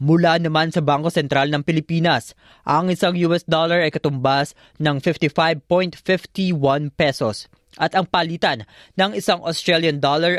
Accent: native